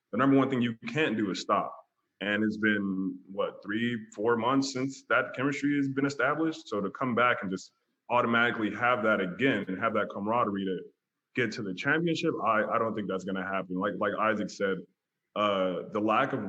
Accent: American